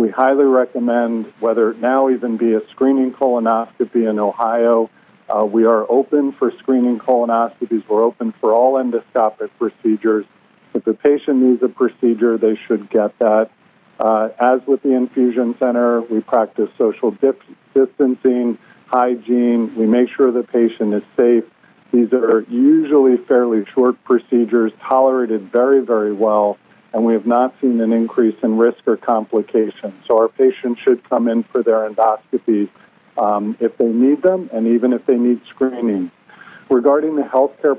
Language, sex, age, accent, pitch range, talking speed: English, male, 50-69, American, 115-130 Hz, 155 wpm